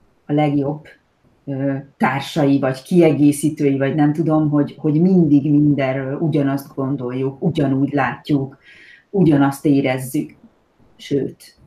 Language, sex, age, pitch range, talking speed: Hungarian, female, 30-49, 135-150 Hz, 100 wpm